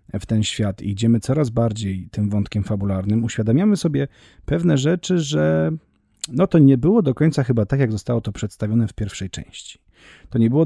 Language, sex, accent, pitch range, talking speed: Polish, male, native, 105-125 Hz, 185 wpm